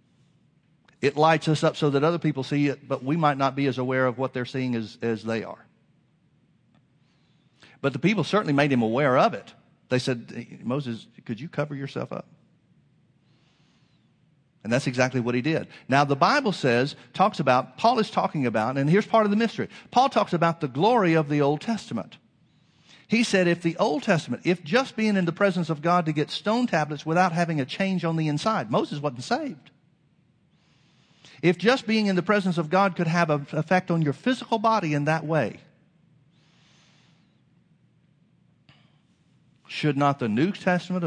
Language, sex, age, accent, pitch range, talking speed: English, male, 50-69, American, 135-180 Hz, 185 wpm